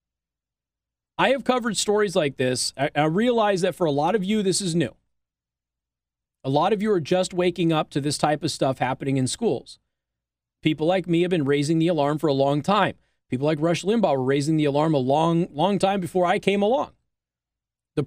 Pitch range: 135-195 Hz